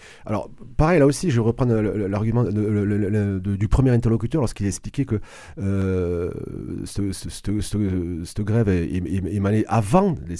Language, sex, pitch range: French, male, 95-120 Hz